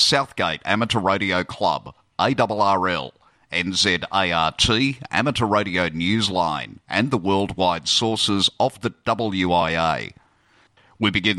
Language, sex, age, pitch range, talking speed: English, male, 50-69, 90-115 Hz, 95 wpm